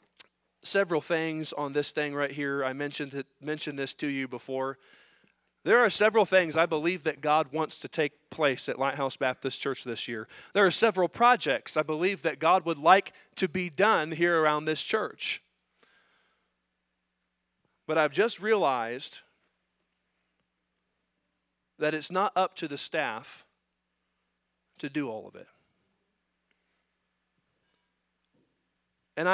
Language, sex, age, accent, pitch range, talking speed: English, male, 40-59, American, 120-165 Hz, 135 wpm